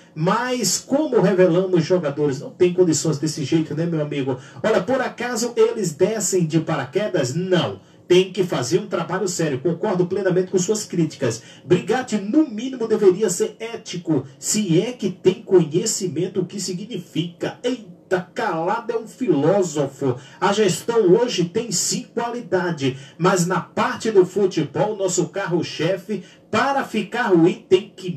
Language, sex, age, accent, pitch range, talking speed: Portuguese, male, 50-69, Brazilian, 165-220 Hz, 145 wpm